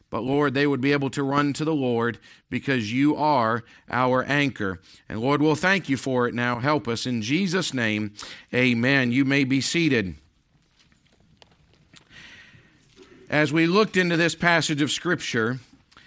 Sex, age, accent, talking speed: male, 50-69, American, 155 wpm